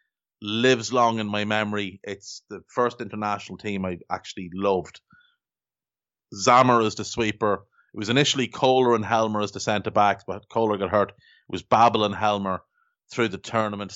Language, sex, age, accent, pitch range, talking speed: English, male, 30-49, Irish, 100-120 Hz, 165 wpm